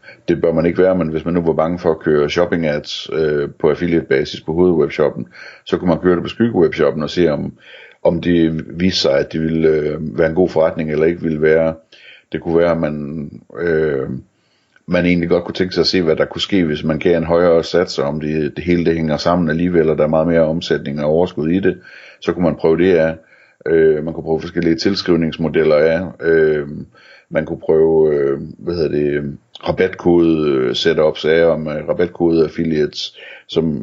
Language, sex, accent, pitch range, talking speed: Danish, male, native, 80-90 Hz, 205 wpm